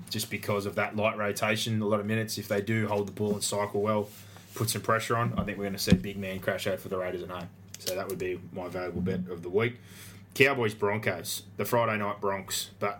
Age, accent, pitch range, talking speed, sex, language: 20-39, Australian, 100-110 Hz, 255 wpm, male, English